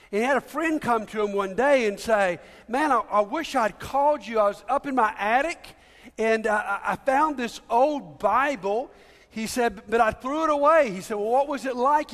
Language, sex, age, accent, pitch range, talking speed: English, male, 50-69, American, 220-300 Hz, 230 wpm